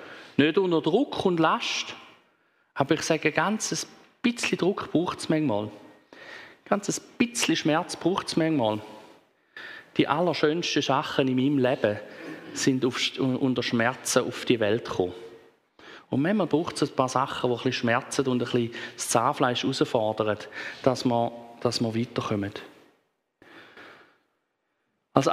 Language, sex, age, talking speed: German, male, 40-59, 135 wpm